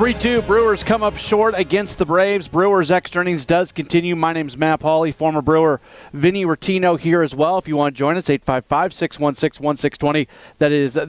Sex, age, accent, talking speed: male, 40-59, American, 190 wpm